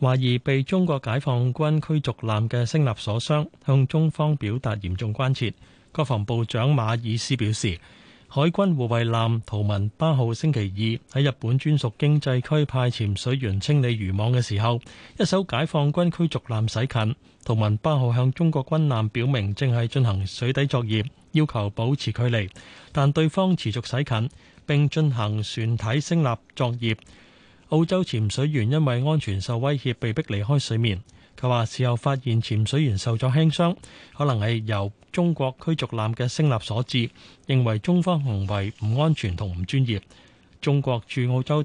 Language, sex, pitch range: Chinese, male, 110-145 Hz